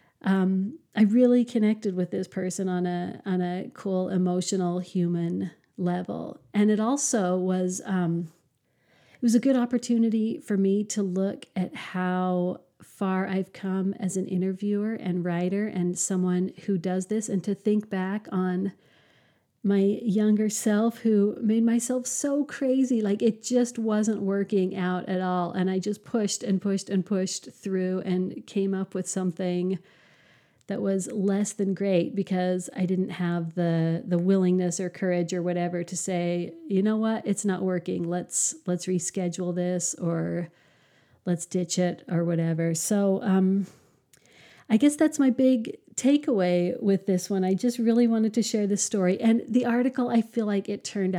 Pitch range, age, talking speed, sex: 180-215 Hz, 40-59, 165 wpm, female